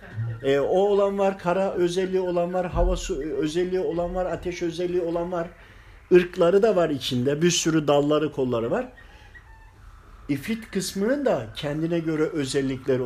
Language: Turkish